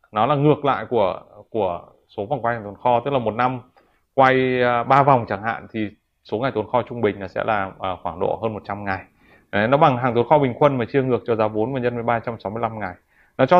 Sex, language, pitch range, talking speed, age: male, Vietnamese, 110-140 Hz, 245 wpm, 20-39